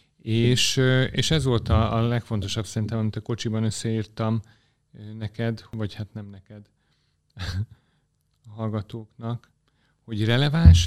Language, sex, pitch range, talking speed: Hungarian, male, 105-135 Hz, 110 wpm